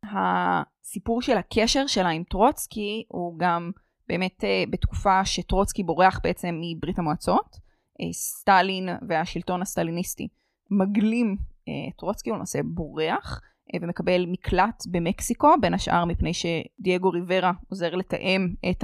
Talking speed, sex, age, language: 110 wpm, female, 20-39, Hebrew